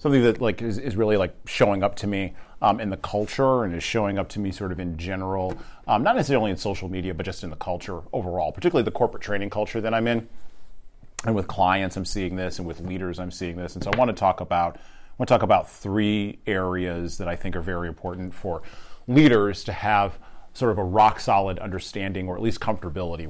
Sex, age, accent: male, 30-49, American